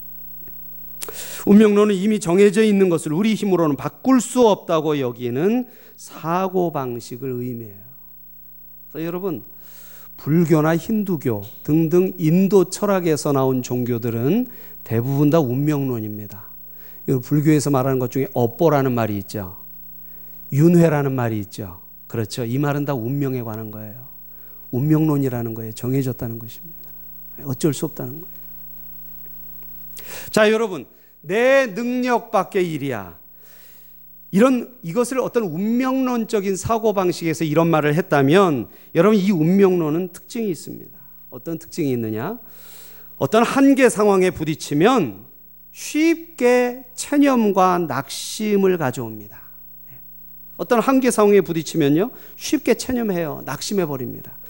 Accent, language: native, Korean